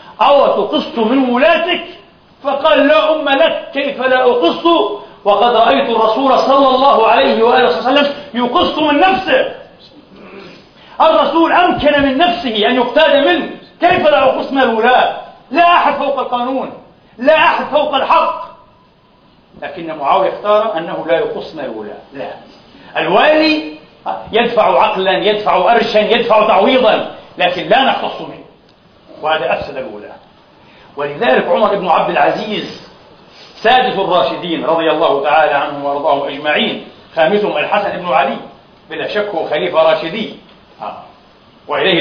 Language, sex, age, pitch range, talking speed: Arabic, male, 50-69, 185-290 Hz, 125 wpm